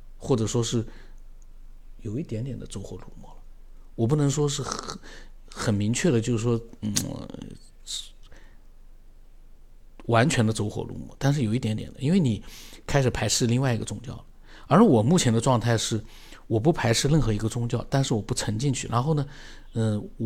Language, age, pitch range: Chinese, 50-69, 105-135 Hz